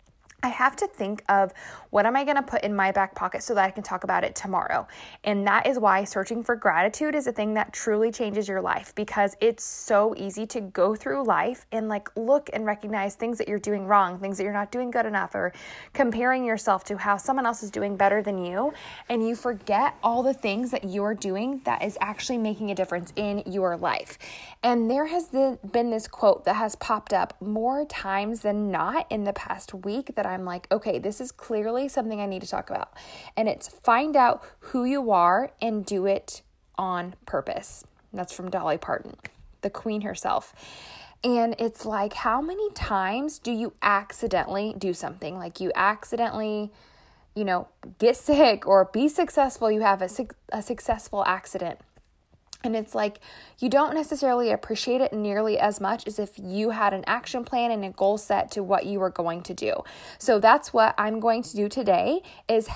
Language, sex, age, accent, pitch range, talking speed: English, female, 20-39, American, 195-240 Hz, 200 wpm